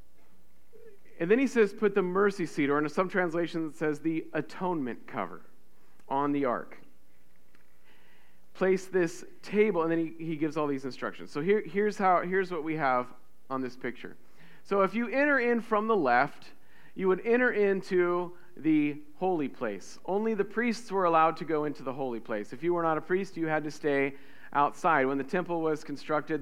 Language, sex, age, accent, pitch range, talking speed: English, male, 40-59, American, 145-185 Hz, 190 wpm